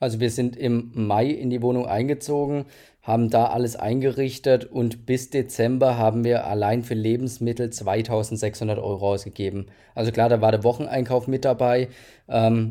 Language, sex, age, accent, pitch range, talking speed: German, male, 20-39, German, 110-125 Hz, 155 wpm